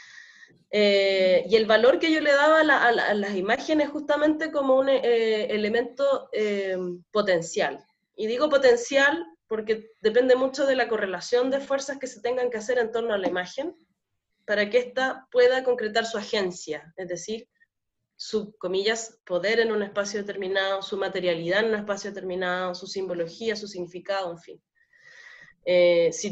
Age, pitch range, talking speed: 20-39, 200-270 Hz, 165 wpm